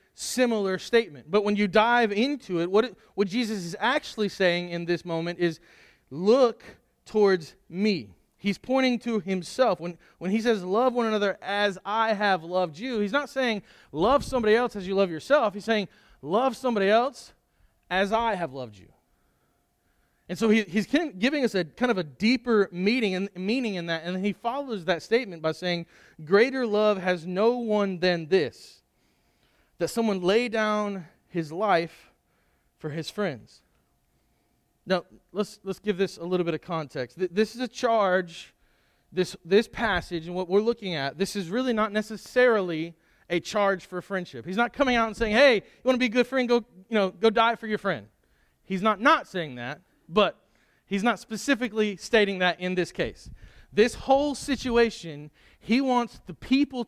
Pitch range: 175-230 Hz